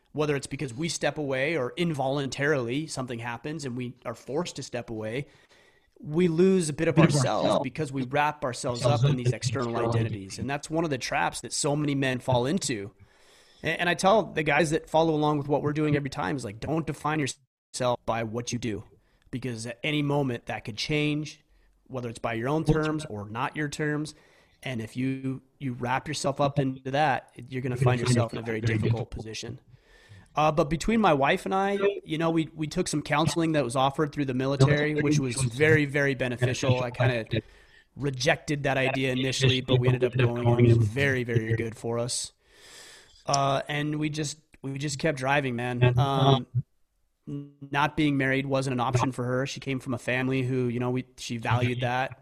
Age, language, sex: 30-49, English, male